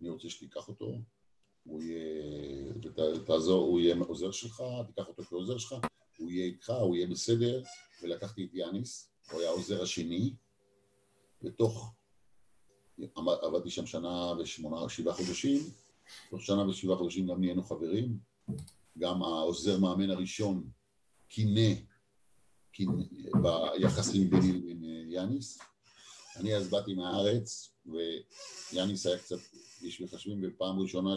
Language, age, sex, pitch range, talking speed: Hebrew, 50-69, male, 85-100 Hz, 115 wpm